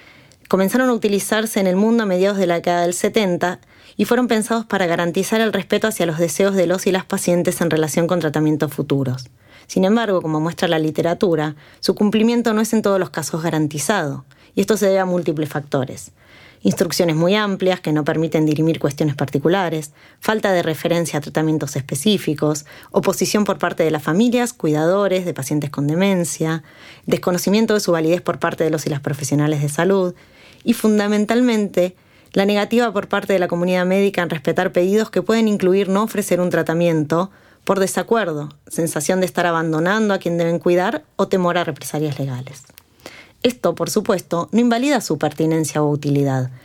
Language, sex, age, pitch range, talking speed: Spanish, female, 20-39, 155-195 Hz, 180 wpm